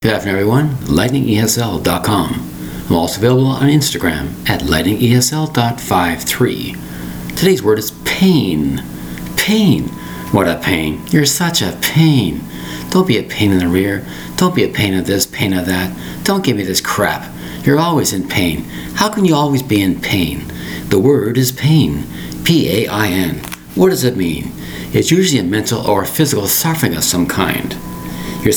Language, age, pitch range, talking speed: English, 60-79, 85-135 Hz, 160 wpm